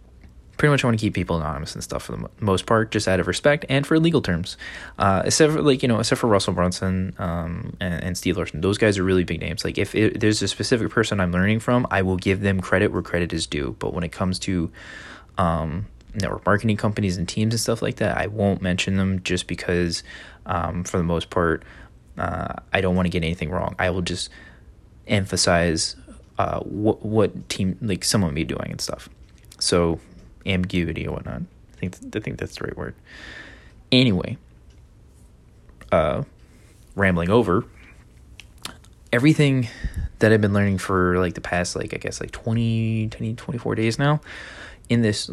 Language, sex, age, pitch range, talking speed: English, male, 20-39, 90-110 Hz, 195 wpm